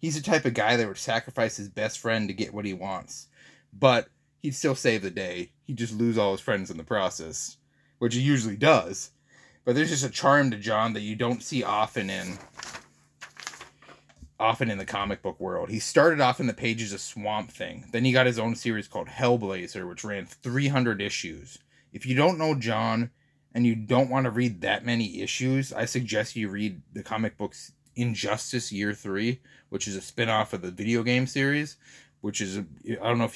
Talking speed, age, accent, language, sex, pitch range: 205 wpm, 30-49, American, English, male, 105-130 Hz